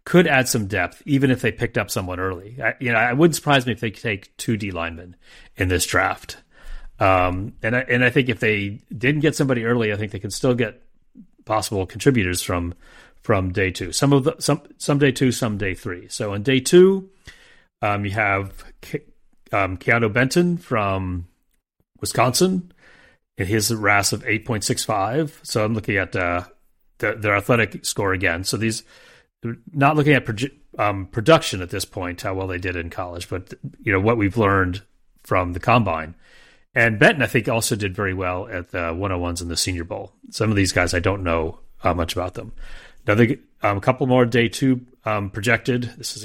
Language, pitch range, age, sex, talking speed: English, 95-125 Hz, 30-49, male, 205 wpm